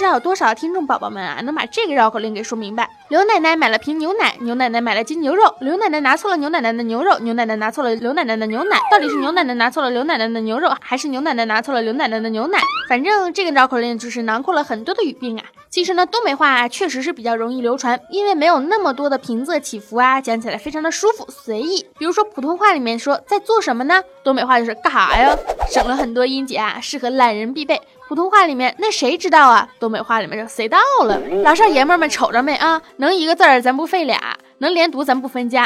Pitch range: 240-345 Hz